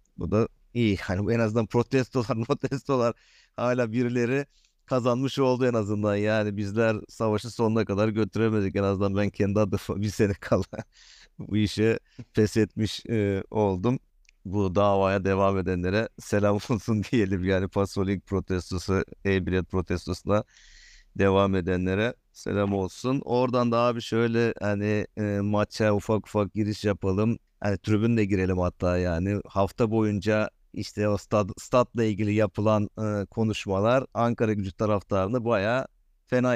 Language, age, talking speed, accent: Turkish, 50-69, 135 wpm, native